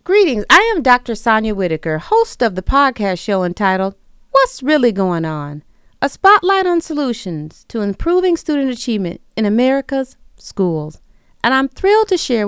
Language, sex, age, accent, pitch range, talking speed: English, female, 40-59, American, 190-310 Hz, 155 wpm